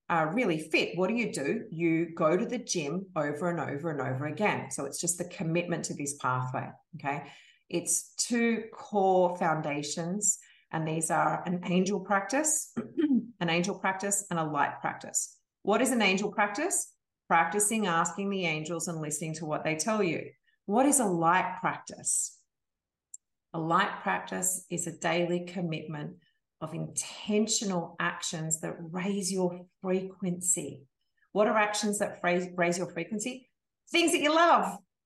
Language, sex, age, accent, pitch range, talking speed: English, female, 40-59, Australian, 170-240 Hz, 155 wpm